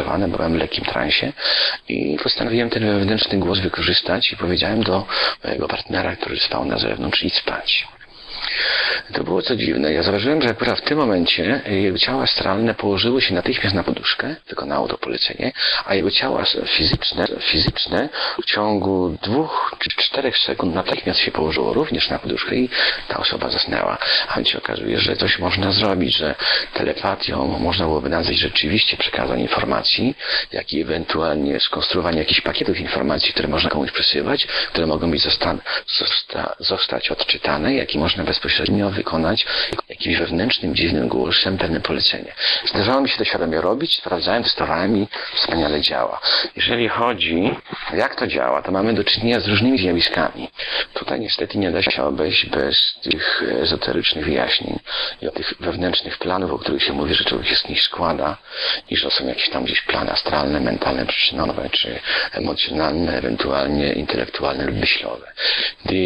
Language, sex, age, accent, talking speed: Polish, male, 40-59, native, 160 wpm